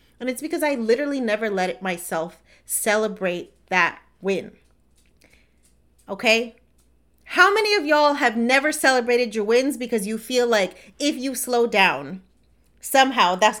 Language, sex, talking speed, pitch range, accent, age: English, female, 135 wpm, 190-245 Hz, American, 30-49